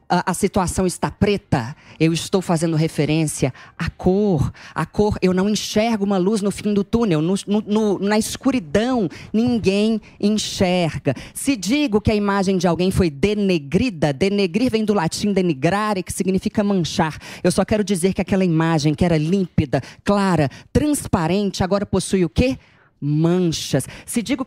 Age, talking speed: 20-39, 155 wpm